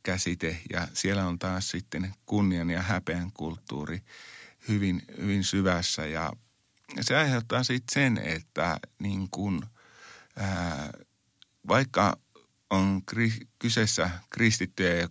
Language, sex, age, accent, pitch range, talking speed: Finnish, male, 50-69, native, 85-110 Hz, 110 wpm